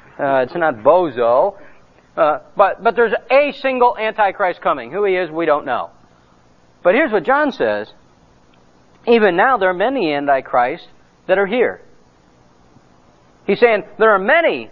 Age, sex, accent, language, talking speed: 50-69, male, American, English, 150 wpm